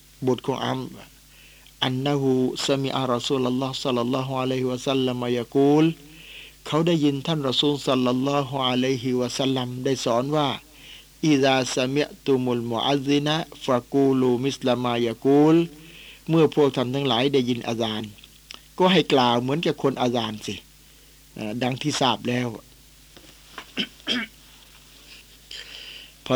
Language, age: Thai, 60-79